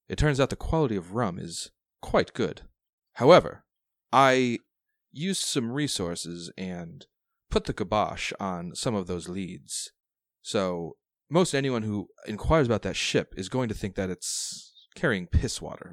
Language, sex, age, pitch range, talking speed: English, male, 30-49, 95-115 Hz, 155 wpm